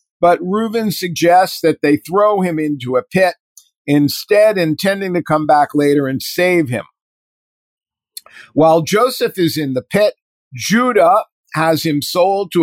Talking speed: 145 wpm